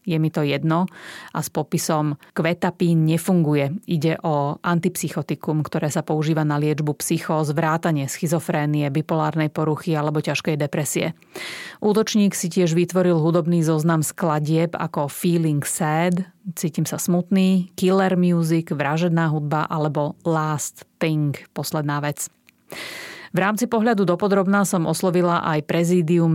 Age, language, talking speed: 30-49, Slovak, 125 wpm